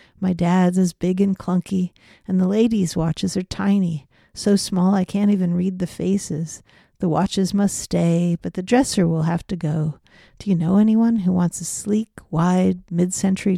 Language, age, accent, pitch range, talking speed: English, 50-69, American, 170-195 Hz, 180 wpm